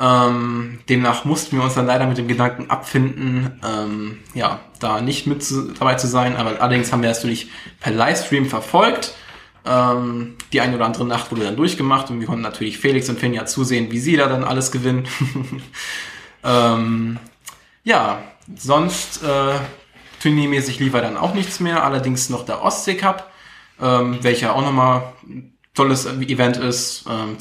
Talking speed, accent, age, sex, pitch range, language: 160 wpm, German, 10-29, male, 115-135 Hz, German